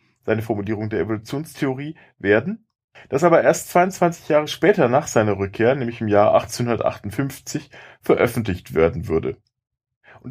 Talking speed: 130 wpm